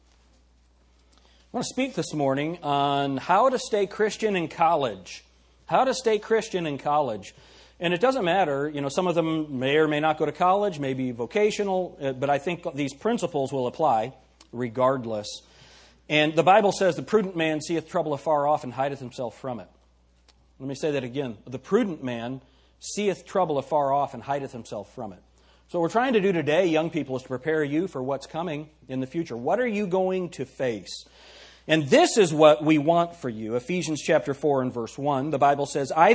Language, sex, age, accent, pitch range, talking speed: English, male, 40-59, American, 115-170 Hz, 200 wpm